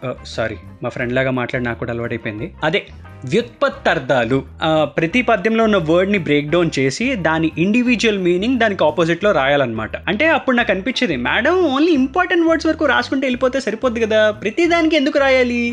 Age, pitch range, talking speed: 20-39, 160-245 Hz, 160 wpm